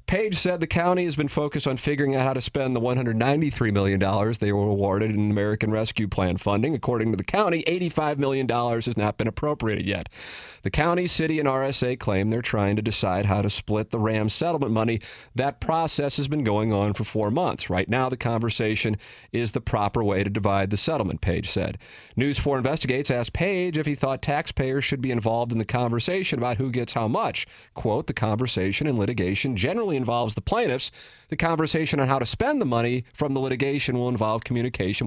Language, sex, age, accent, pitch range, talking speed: English, male, 40-59, American, 110-150 Hz, 205 wpm